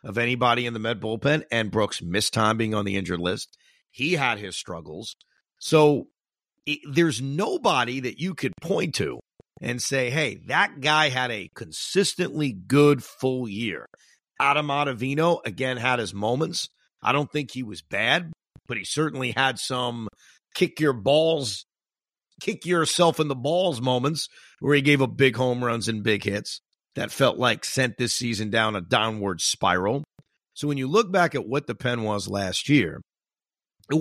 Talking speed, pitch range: 175 wpm, 120-150 Hz